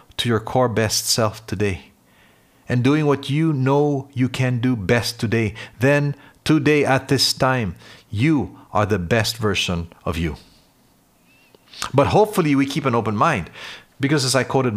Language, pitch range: English, 105-135 Hz